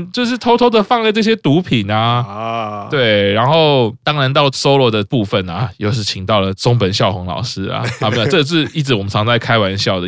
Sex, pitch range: male, 100-130 Hz